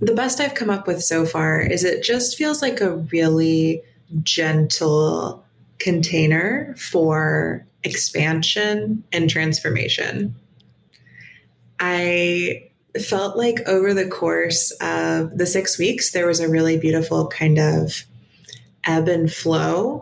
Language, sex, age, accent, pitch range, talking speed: English, female, 20-39, American, 155-185 Hz, 125 wpm